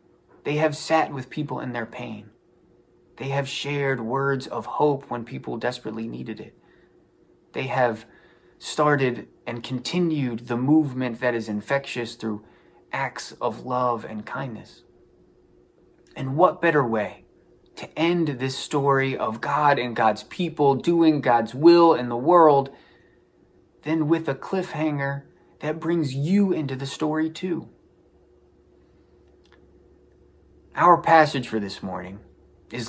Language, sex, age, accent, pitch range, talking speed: English, male, 20-39, American, 120-160 Hz, 130 wpm